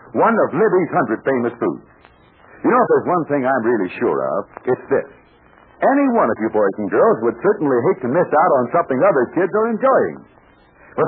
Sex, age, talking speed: male, 60-79, 205 wpm